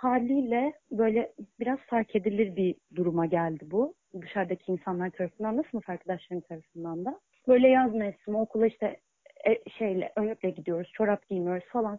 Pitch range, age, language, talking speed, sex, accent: 185-235 Hz, 30-49, Turkish, 140 wpm, female, native